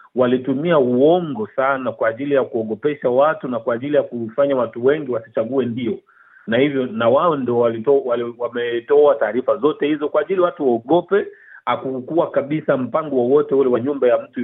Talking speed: 160 wpm